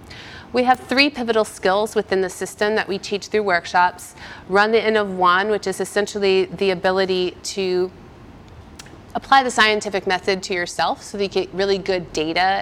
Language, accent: English, American